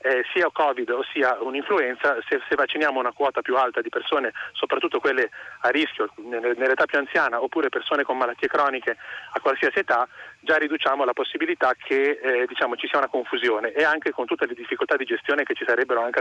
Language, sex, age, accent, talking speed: Italian, male, 30-49, native, 190 wpm